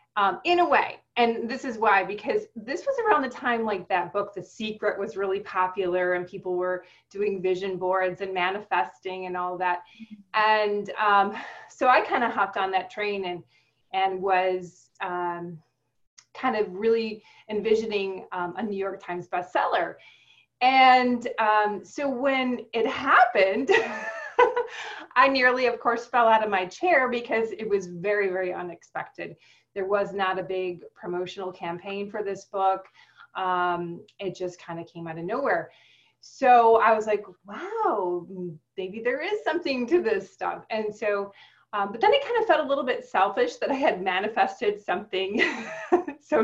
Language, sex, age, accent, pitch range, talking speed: English, female, 30-49, American, 185-245 Hz, 165 wpm